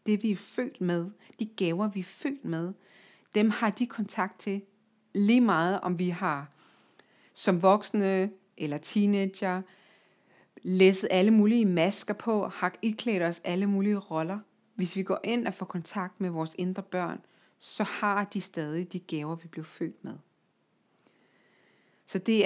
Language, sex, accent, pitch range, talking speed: Danish, female, native, 180-215 Hz, 160 wpm